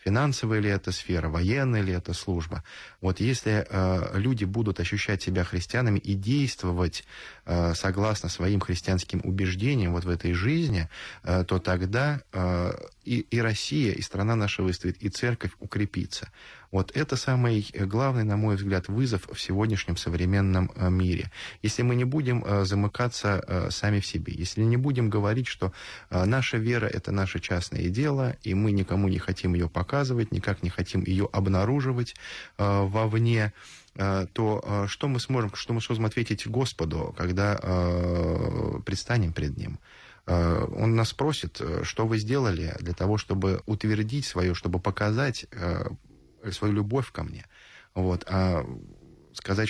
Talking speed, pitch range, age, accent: 140 wpm, 90-110 Hz, 20-39, native